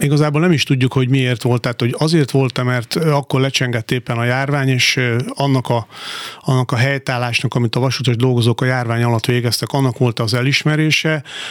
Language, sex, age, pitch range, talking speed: Hungarian, male, 40-59, 120-135 Hz, 180 wpm